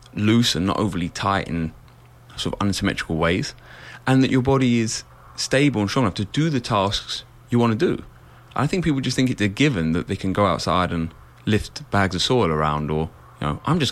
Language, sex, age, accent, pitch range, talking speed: English, male, 30-49, British, 85-120 Hz, 220 wpm